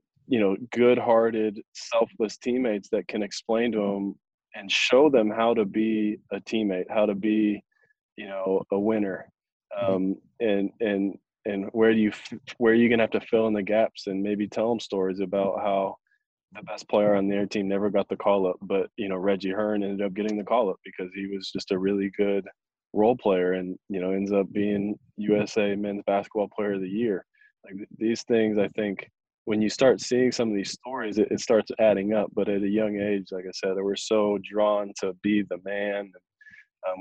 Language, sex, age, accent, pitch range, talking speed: English, male, 20-39, American, 100-110 Hz, 210 wpm